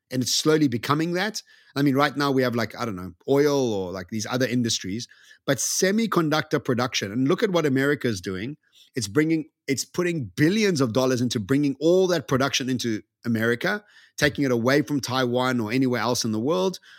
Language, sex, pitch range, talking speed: English, male, 120-155 Hz, 200 wpm